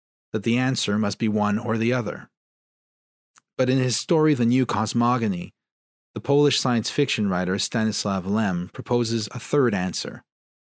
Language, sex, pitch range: English, male, 95-120 Hz